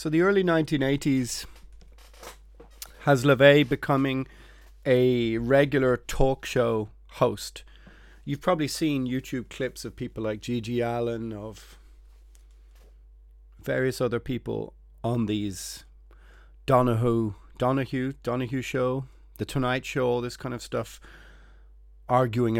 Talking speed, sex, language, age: 110 wpm, male, English, 30-49